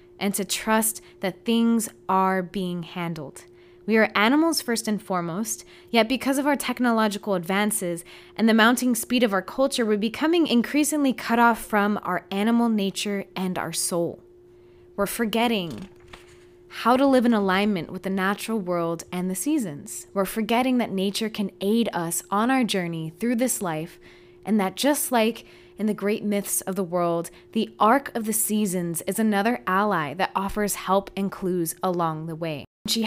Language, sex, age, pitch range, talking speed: English, female, 20-39, 180-230 Hz, 170 wpm